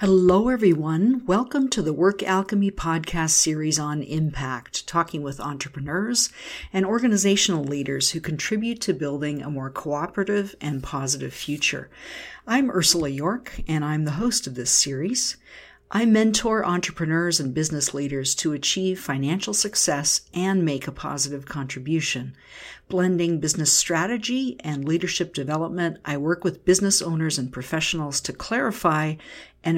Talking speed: 135 wpm